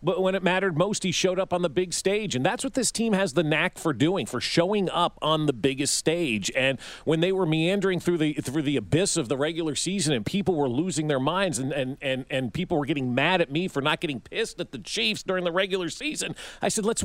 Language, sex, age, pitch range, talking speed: English, male, 40-59, 180-265 Hz, 255 wpm